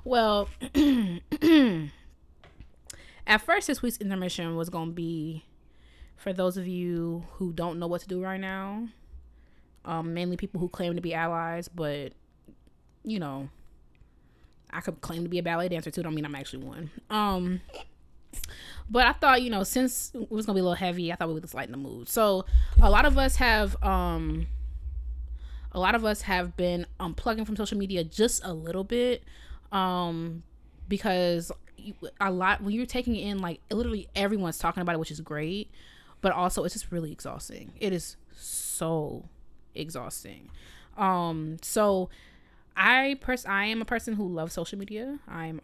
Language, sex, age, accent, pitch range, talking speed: English, female, 20-39, American, 160-205 Hz, 170 wpm